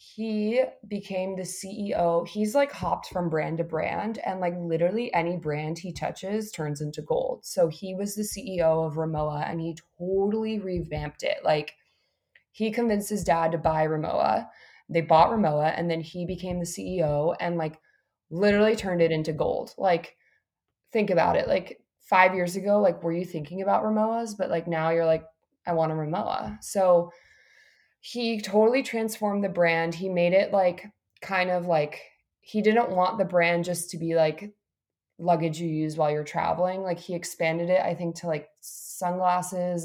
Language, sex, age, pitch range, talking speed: English, female, 20-39, 160-195 Hz, 175 wpm